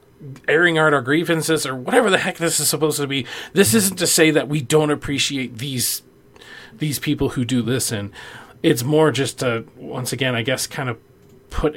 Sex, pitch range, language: male, 110-135 Hz, English